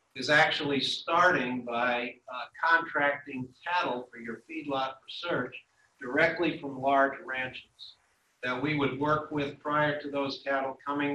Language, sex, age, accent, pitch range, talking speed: English, male, 50-69, American, 125-145 Hz, 135 wpm